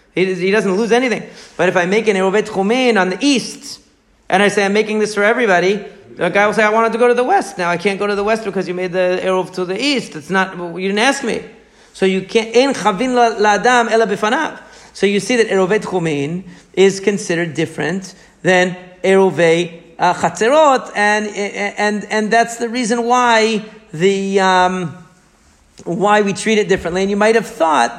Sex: male